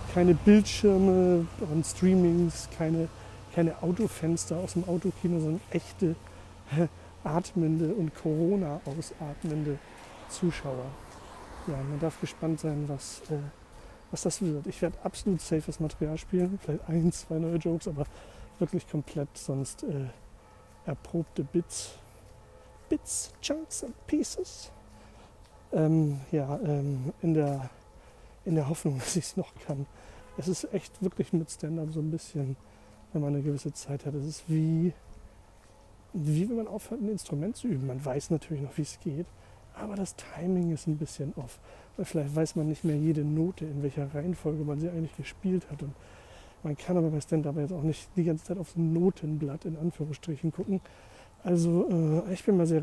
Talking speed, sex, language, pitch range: 160 wpm, male, German, 145-175 Hz